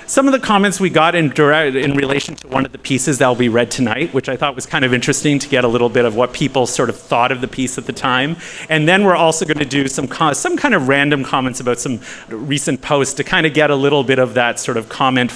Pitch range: 120-150 Hz